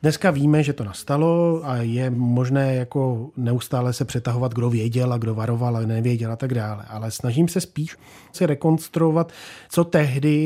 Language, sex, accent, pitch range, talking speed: Czech, male, native, 120-150 Hz, 170 wpm